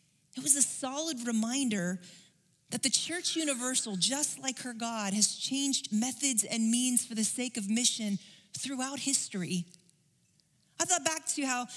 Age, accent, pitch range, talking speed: 40-59, American, 190-275 Hz, 155 wpm